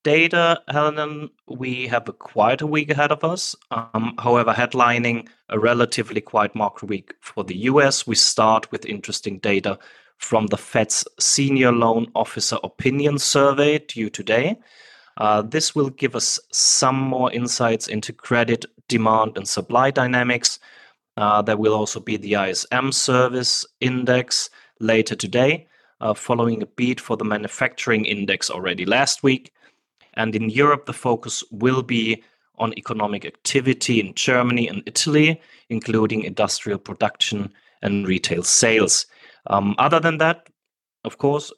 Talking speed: 145 wpm